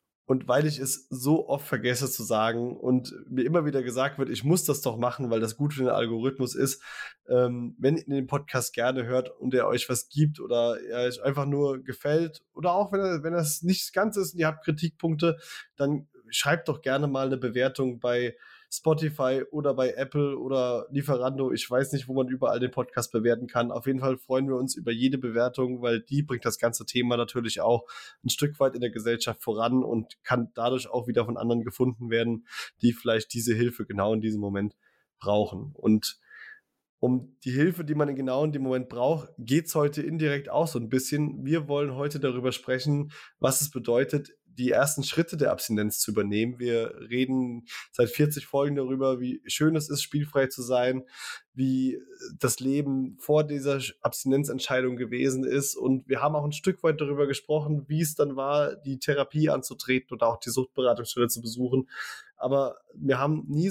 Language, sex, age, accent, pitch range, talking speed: German, male, 20-39, German, 125-145 Hz, 190 wpm